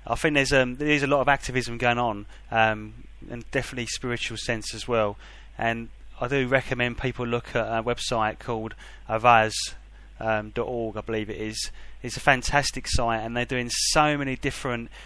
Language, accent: English, British